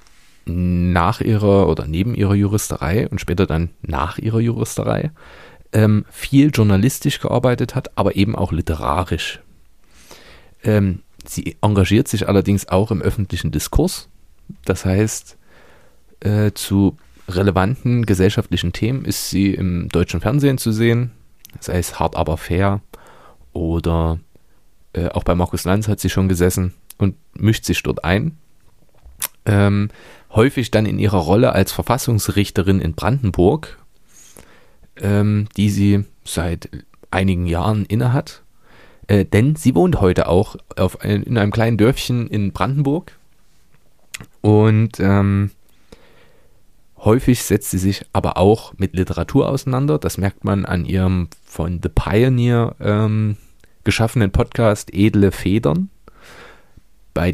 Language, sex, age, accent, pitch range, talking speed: German, male, 30-49, German, 90-110 Hz, 125 wpm